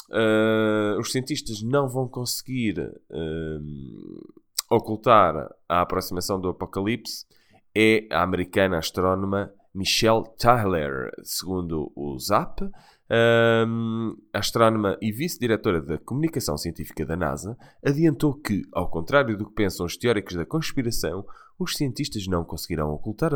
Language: Portuguese